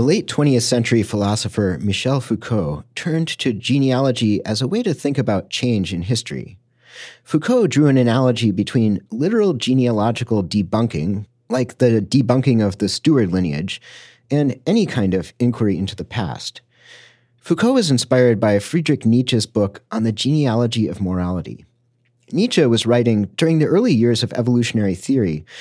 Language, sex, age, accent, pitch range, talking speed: English, male, 40-59, American, 105-135 Hz, 150 wpm